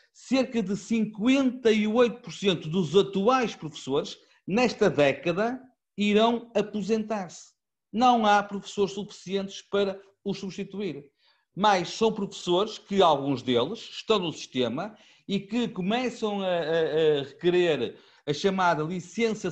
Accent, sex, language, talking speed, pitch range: Portuguese, male, Portuguese, 110 wpm, 175-225 Hz